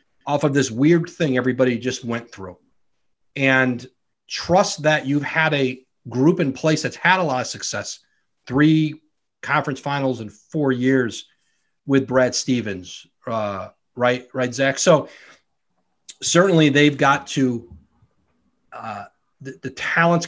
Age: 40-59